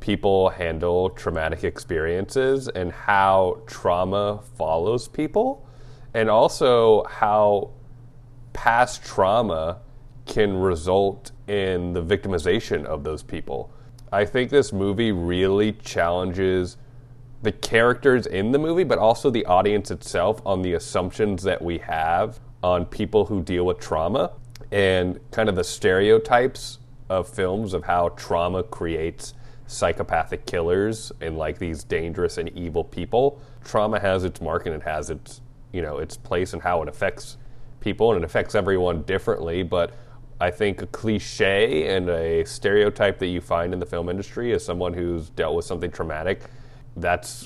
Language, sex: English, male